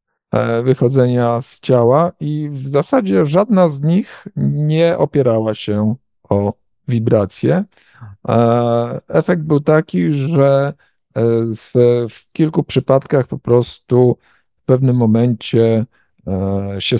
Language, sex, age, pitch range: Polish, male, 50-69, 120-165 Hz